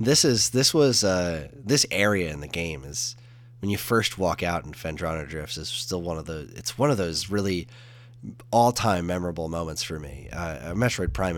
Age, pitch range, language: 20-39, 85-120 Hz, English